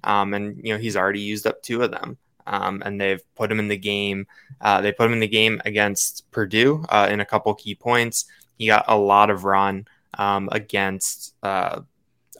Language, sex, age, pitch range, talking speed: English, male, 20-39, 100-110 Hz, 210 wpm